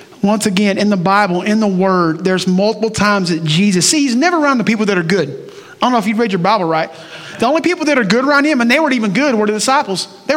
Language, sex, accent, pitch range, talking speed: English, male, American, 170-225 Hz, 280 wpm